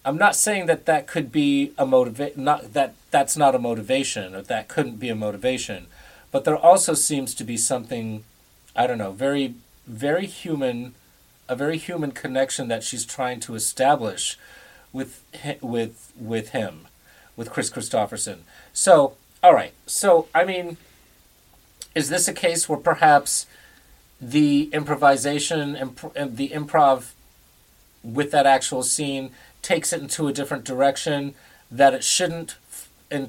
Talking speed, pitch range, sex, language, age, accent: 145 wpm, 120-150 Hz, male, English, 40-59, American